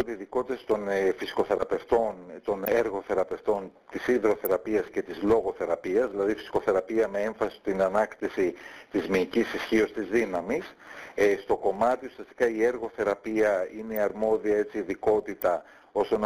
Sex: male